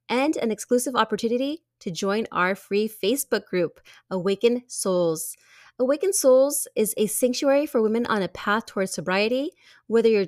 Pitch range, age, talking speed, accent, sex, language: 195-260 Hz, 30-49, 150 wpm, American, female, English